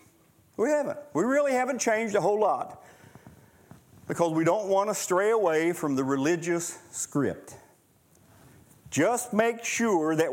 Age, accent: 50-69, American